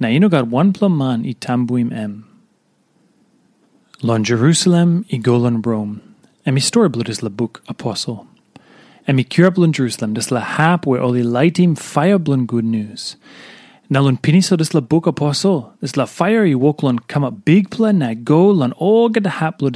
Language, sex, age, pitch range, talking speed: English, male, 30-49, 125-180 Hz, 190 wpm